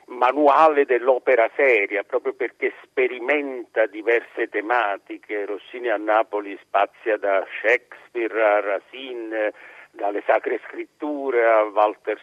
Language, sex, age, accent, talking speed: Italian, male, 60-79, native, 105 wpm